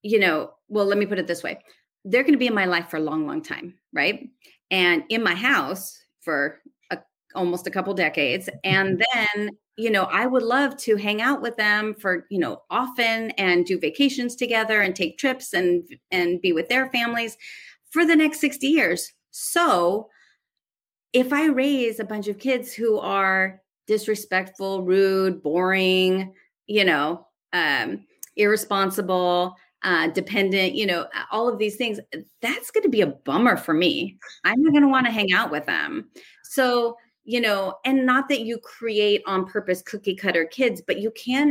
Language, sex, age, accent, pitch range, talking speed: English, female, 30-49, American, 185-240 Hz, 180 wpm